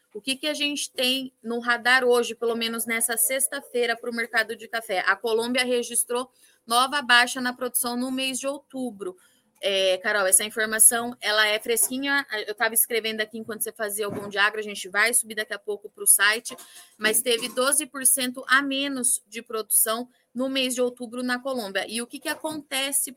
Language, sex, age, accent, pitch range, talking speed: Portuguese, female, 20-39, Brazilian, 210-255 Hz, 185 wpm